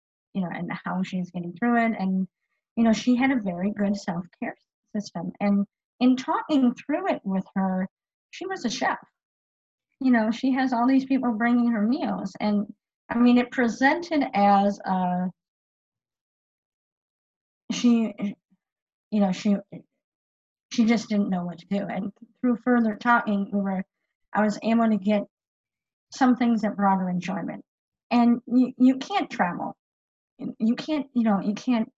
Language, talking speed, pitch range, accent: English, 160 wpm, 205-260 Hz, American